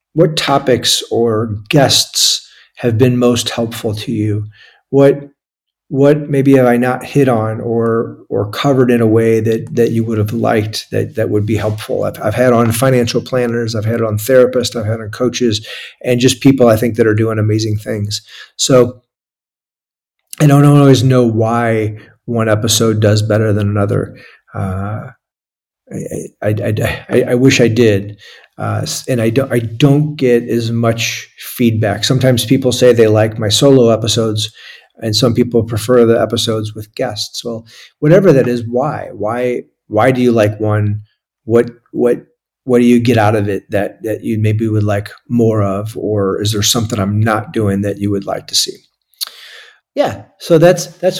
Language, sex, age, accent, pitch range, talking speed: English, male, 40-59, American, 110-125 Hz, 180 wpm